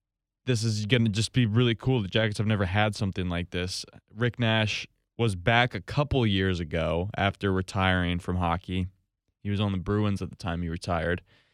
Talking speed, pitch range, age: 200 wpm, 95-115 Hz, 20-39